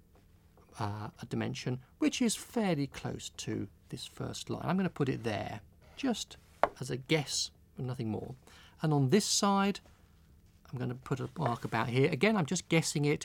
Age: 40-59